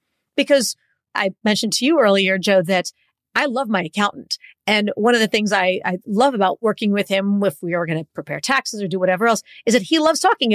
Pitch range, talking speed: 195-245 Hz, 230 wpm